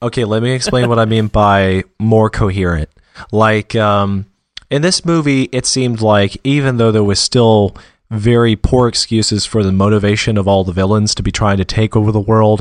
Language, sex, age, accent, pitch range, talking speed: English, male, 30-49, American, 100-120 Hz, 195 wpm